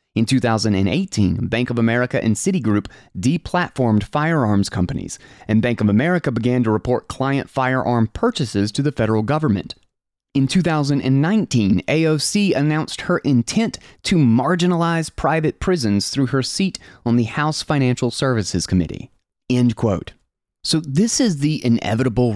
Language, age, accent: English, 30-49, American